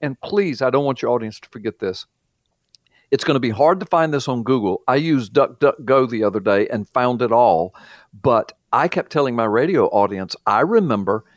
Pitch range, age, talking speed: 130-215 Hz, 50-69, 205 wpm